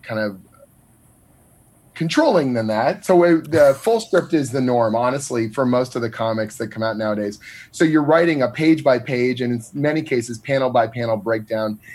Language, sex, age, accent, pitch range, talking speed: English, male, 30-49, American, 115-140 Hz, 185 wpm